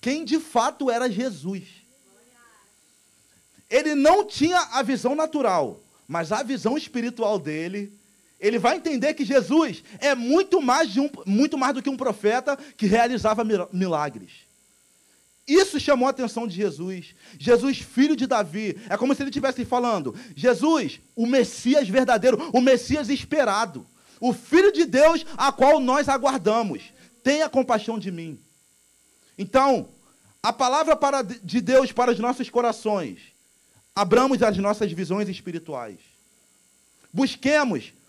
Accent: Brazilian